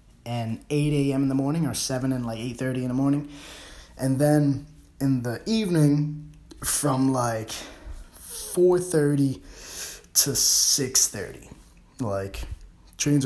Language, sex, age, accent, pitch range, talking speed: English, male, 20-39, American, 110-155 Hz, 130 wpm